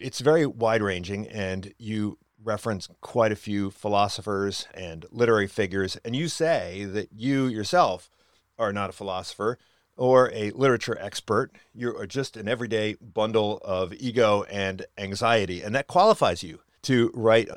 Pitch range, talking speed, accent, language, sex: 95-135 Hz, 145 wpm, American, English, male